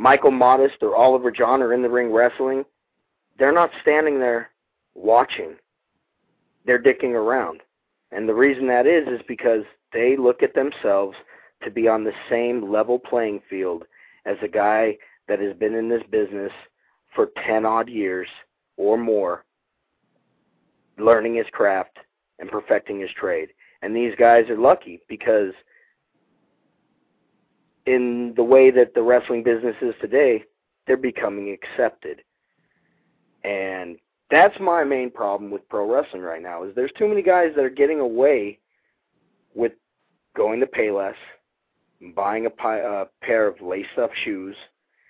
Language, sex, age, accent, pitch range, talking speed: English, male, 40-59, American, 105-130 Hz, 140 wpm